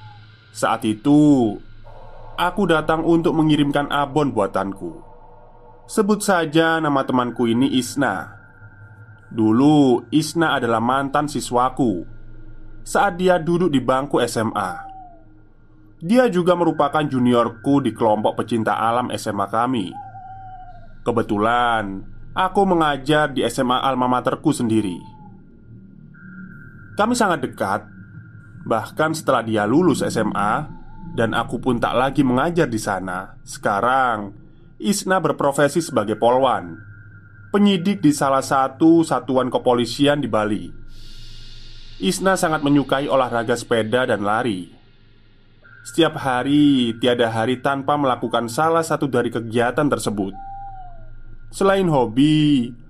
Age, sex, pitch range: 20-39, male, 115-155 Hz